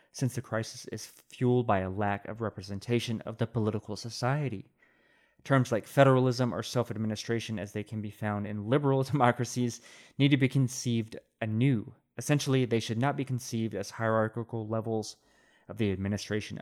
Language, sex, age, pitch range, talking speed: English, male, 30-49, 110-125 Hz, 160 wpm